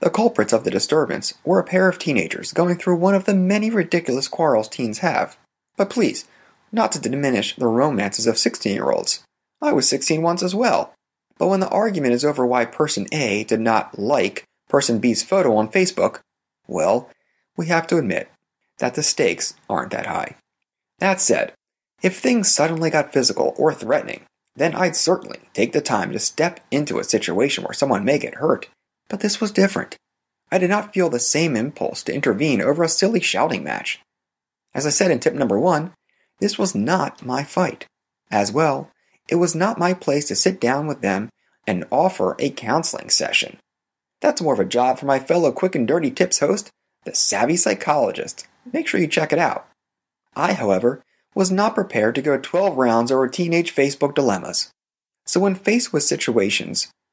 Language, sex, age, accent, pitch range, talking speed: English, male, 30-49, American, 135-190 Hz, 185 wpm